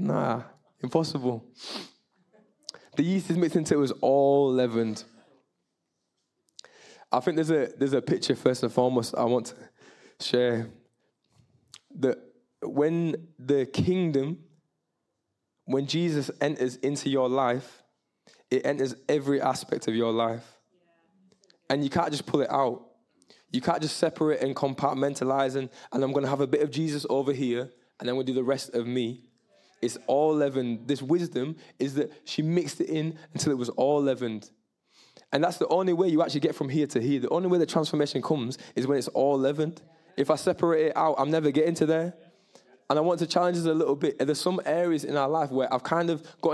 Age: 20-39